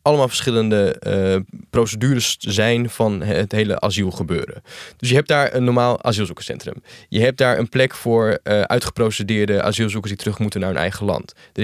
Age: 20-39